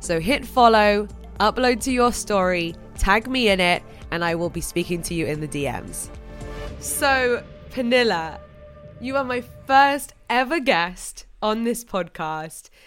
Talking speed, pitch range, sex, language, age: 150 wpm, 195-255 Hz, female, English, 20-39